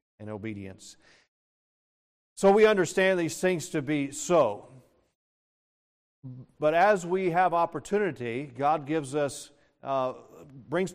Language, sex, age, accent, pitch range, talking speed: English, male, 40-59, American, 120-155 Hz, 110 wpm